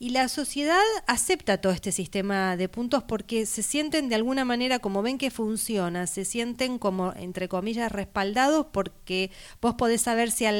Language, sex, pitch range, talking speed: Spanish, female, 185-250 Hz, 175 wpm